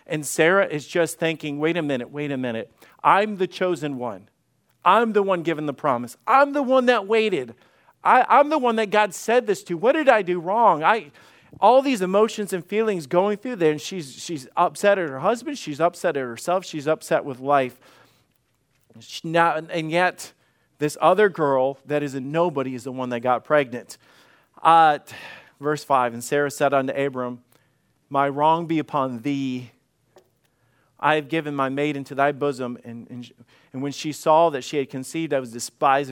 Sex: male